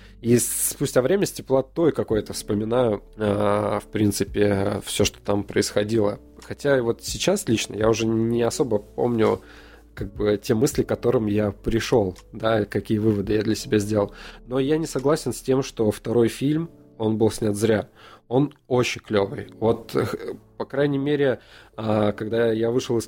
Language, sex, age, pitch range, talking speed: Russian, male, 20-39, 105-125 Hz, 160 wpm